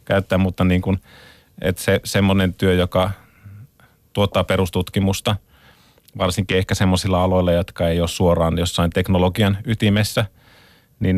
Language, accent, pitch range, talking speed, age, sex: Finnish, native, 90-110 Hz, 125 wpm, 30-49, male